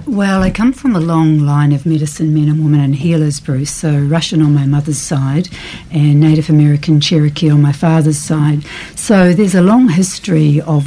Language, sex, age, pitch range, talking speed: English, female, 60-79, 150-170 Hz, 195 wpm